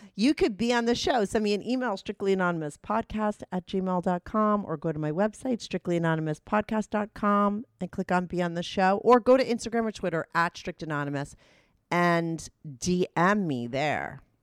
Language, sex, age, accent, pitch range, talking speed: English, female, 40-59, American, 145-195 Hz, 160 wpm